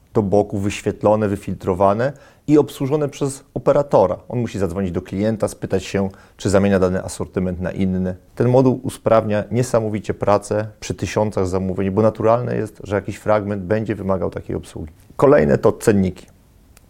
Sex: male